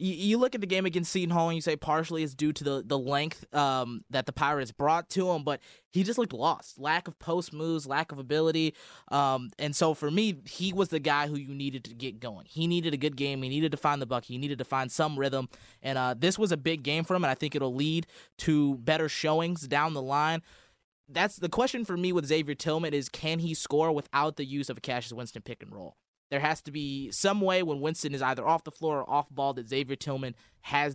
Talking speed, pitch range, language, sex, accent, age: 255 wpm, 135-165 Hz, English, male, American, 20-39